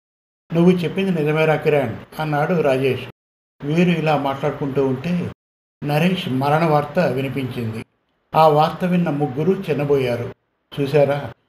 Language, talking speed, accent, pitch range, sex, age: Telugu, 105 wpm, native, 135-160 Hz, male, 60-79